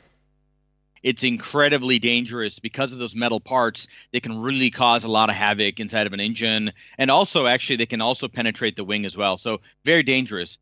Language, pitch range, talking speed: Swedish, 110-145 Hz, 190 wpm